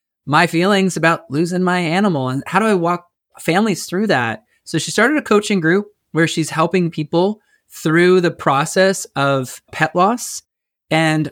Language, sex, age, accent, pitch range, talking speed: English, male, 20-39, American, 135-180 Hz, 165 wpm